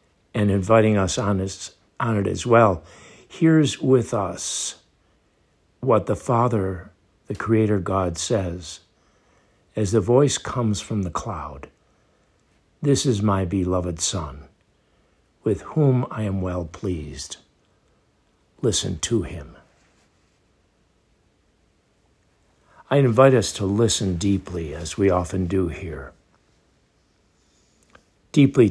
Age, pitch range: 60-79, 90-110 Hz